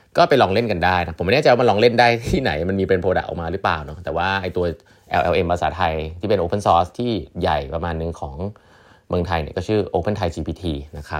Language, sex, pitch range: Thai, male, 80-100 Hz